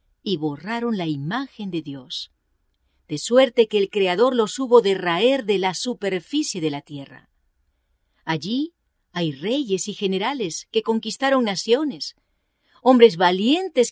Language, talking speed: English, 130 wpm